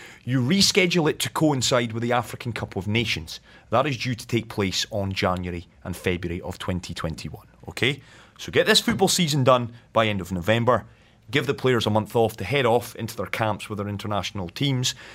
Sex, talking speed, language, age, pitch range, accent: male, 200 wpm, English, 30-49, 100-130 Hz, British